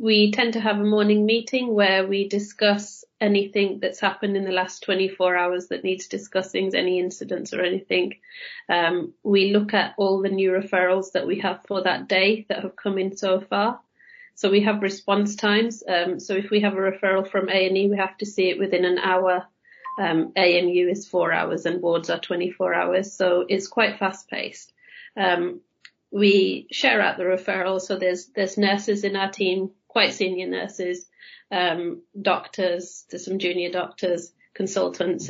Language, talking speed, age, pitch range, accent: English, 185 wpm, 30-49, 185-210 Hz, British